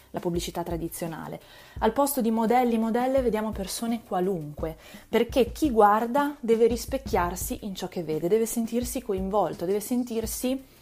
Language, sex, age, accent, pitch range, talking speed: Italian, female, 20-39, native, 180-255 Hz, 140 wpm